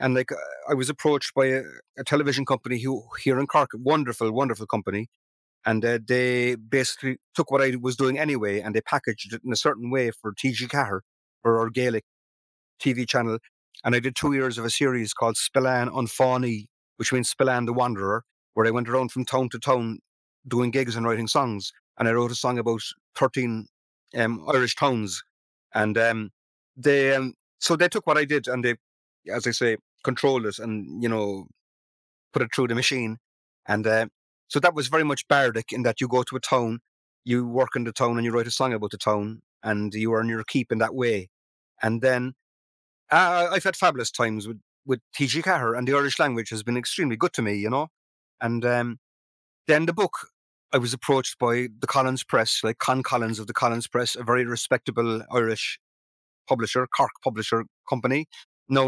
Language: English